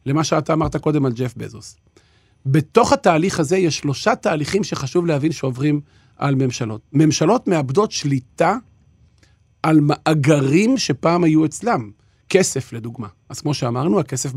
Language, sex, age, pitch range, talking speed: Hebrew, male, 40-59, 135-175 Hz, 135 wpm